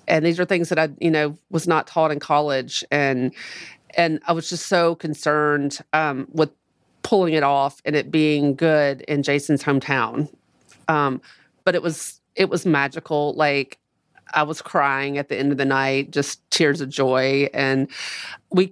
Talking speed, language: 175 wpm, English